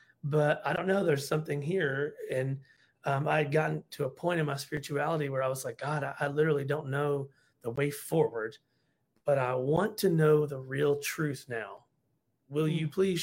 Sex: male